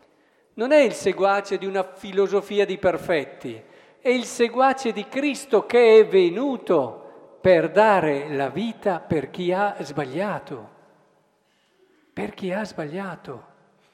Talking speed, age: 125 wpm, 50-69